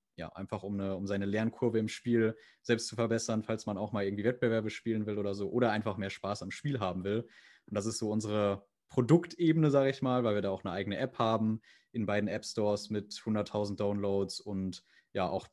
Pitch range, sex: 105-120 Hz, male